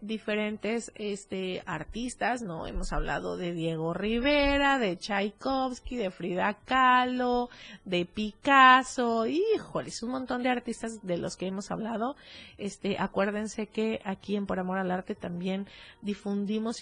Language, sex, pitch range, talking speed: Spanish, female, 195-245 Hz, 135 wpm